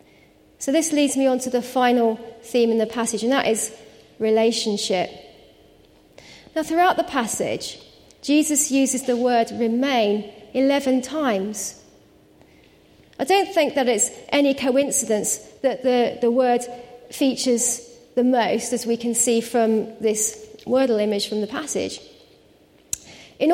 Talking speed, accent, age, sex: 135 wpm, British, 40-59, female